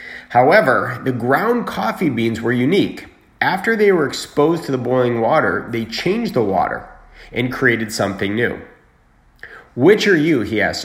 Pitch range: 115-145 Hz